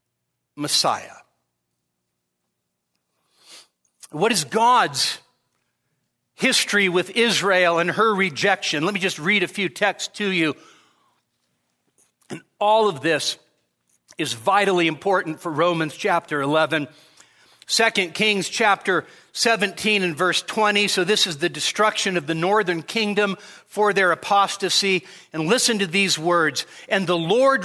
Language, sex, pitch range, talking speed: English, male, 175-220 Hz, 125 wpm